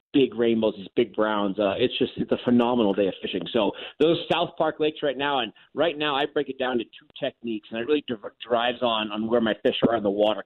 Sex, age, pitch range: male, 30-49, 110-150 Hz